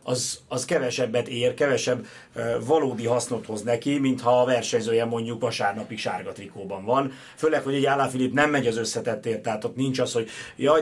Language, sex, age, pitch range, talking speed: Hungarian, male, 30-49, 120-135 Hz, 185 wpm